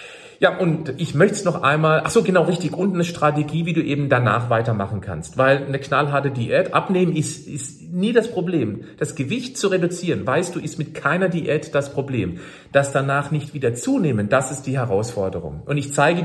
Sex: male